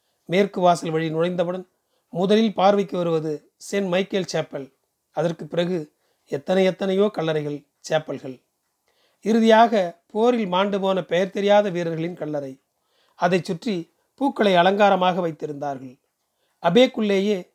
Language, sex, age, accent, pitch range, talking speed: Tamil, male, 40-59, native, 160-200 Hz, 100 wpm